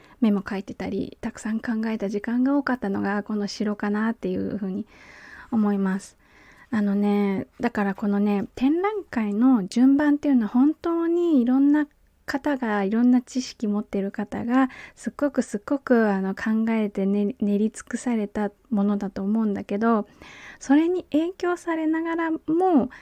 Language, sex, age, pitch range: Japanese, female, 20-39, 205-265 Hz